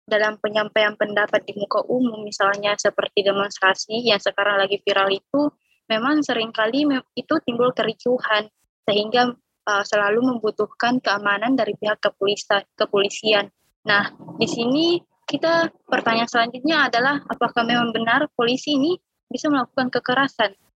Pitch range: 205-250 Hz